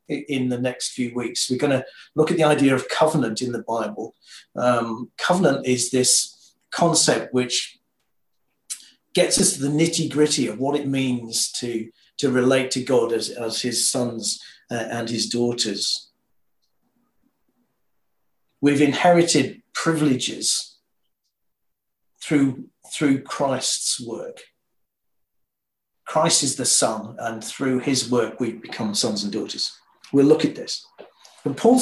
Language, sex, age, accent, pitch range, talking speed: English, male, 50-69, British, 120-145 Hz, 135 wpm